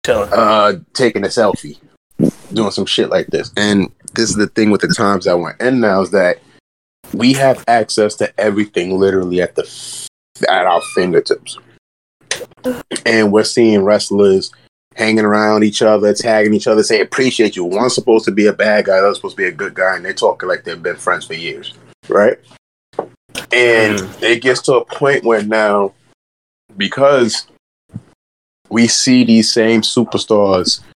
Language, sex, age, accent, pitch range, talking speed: English, male, 30-49, American, 100-115 Hz, 170 wpm